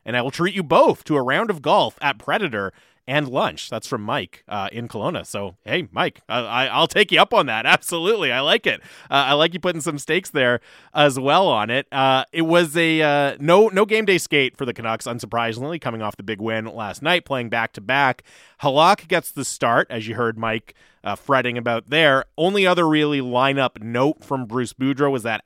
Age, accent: 30-49, American